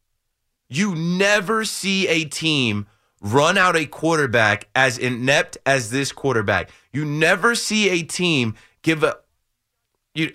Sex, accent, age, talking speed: male, American, 30-49, 130 wpm